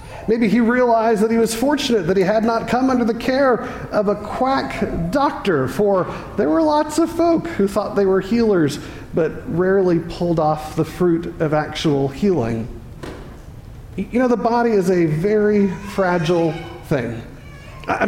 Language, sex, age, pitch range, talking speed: English, male, 40-59, 165-225 Hz, 165 wpm